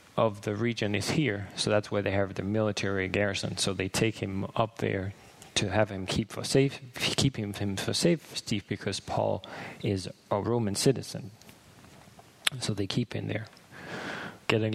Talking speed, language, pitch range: 170 wpm, English, 100-130 Hz